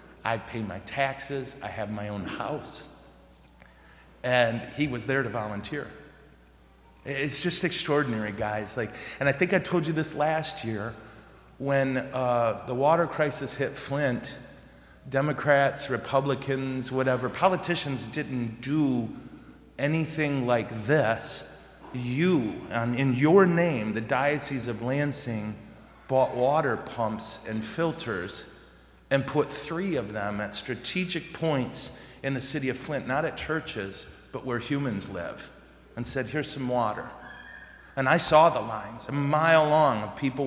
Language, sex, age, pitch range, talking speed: English, male, 30-49, 115-145 Hz, 140 wpm